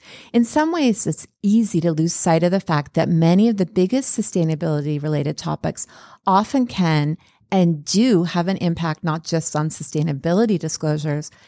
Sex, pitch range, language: female, 160-195 Hz, English